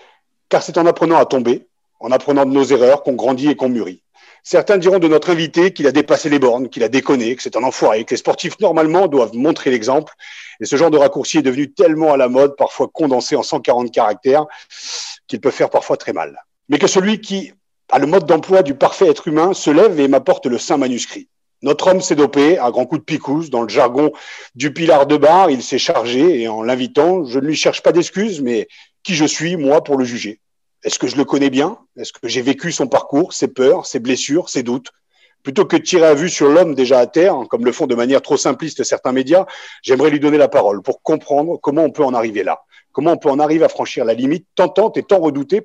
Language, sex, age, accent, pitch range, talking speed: French, male, 40-59, French, 135-180 Hz, 240 wpm